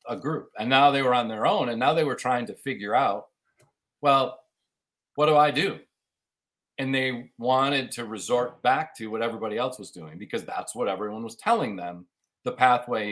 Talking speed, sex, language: 195 wpm, male, English